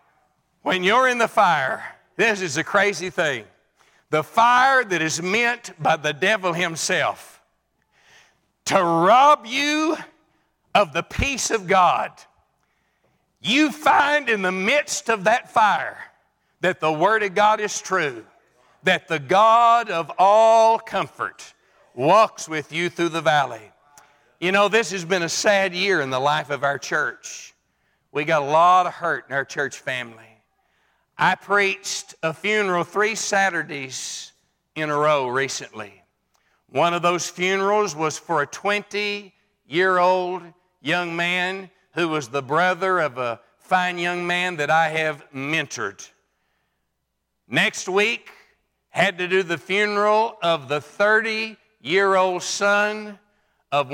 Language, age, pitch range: English, 60-79, 160-205 Hz